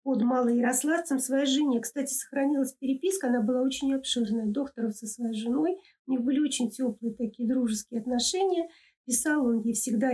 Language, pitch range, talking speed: Russian, 240-315 Hz, 165 wpm